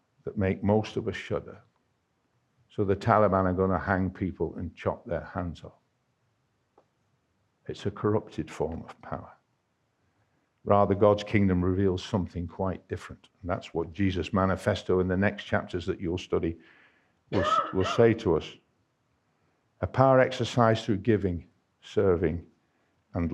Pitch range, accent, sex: 95-115 Hz, British, male